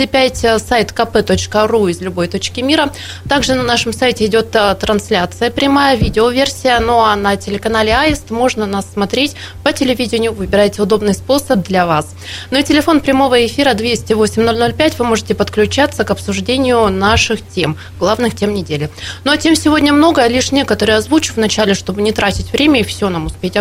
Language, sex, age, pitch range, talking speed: Russian, female, 20-39, 210-260 Hz, 160 wpm